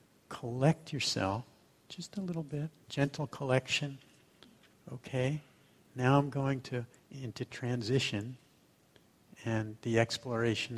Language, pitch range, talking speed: English, 110-135 Hz, 100 wpm